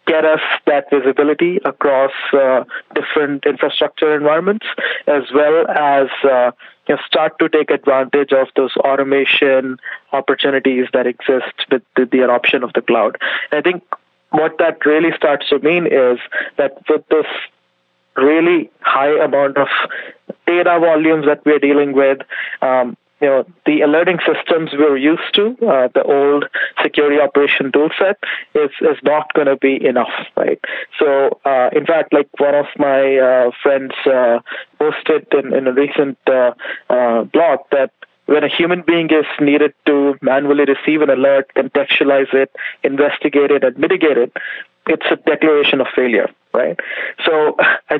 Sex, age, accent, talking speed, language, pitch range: male, 20-39, Indian, 150 wpm, English, 135-155 Hz